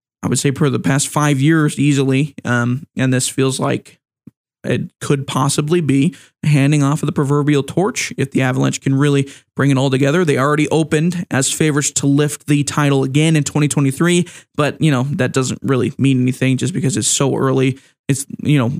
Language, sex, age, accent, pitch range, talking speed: English, male, 20-39, American, 135-155 Hz, 195 wpm